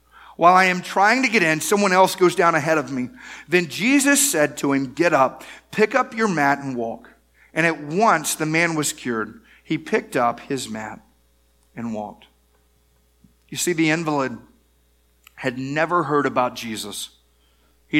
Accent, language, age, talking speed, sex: American, English, 40-59, 170 wpm, male